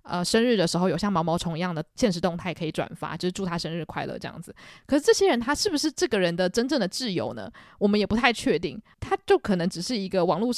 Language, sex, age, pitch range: Chinese, female, 20-39, 180-240 Hz